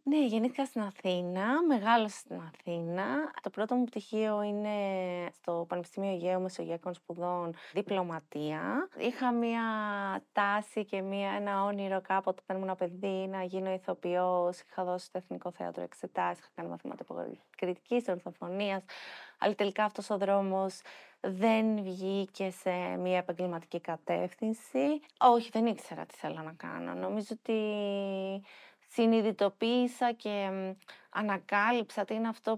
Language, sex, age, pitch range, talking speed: Greek, female, 20-39, 185-230 Hz, 125 wpm